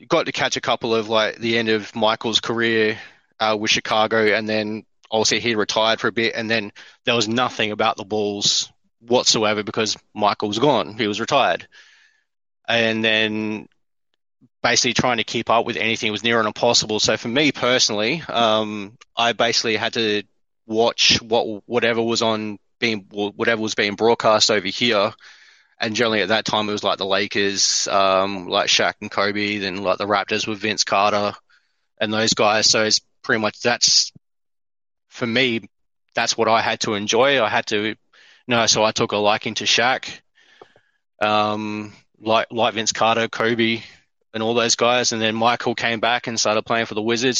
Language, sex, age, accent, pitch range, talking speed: English, male, 20-39, Australian, 105-115 Hz, 180 wpm